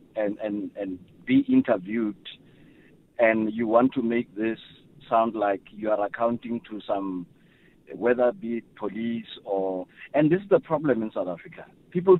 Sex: male